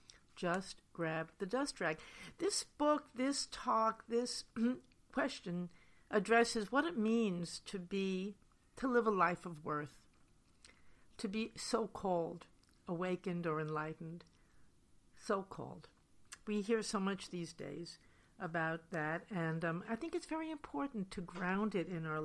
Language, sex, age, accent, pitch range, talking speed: English, female, 60-79, American, 165-225 Hz, 140 wpm